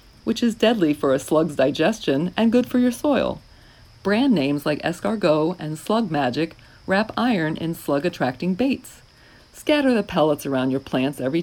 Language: English